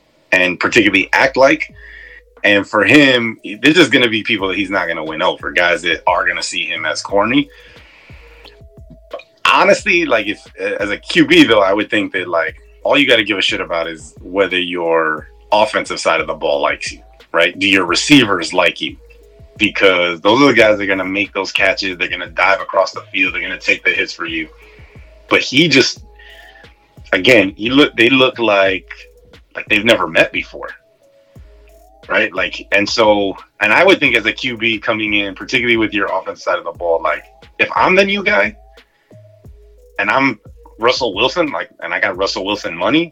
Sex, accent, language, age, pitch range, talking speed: male, American, English, 30-49, 100-150 Hz, 195 wpm